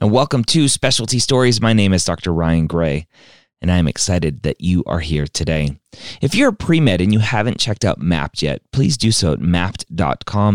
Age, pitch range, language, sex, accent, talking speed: 30-49, 75-105 Hz, English, male, American, 205 wpm